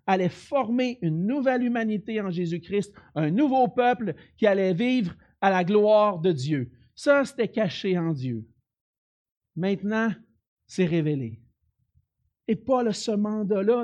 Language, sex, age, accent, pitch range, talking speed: French, male, 50-69, Canadian, 125-185 Hz, 135 wpm